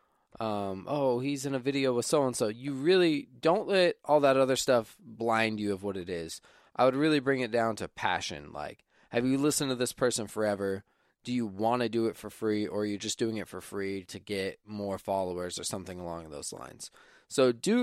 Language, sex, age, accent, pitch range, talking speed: English, male, 20-39, American, 105-130 Hz, 220 wpm